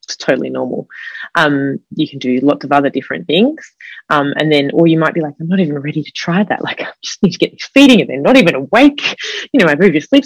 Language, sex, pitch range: English, female, 140-170 Hz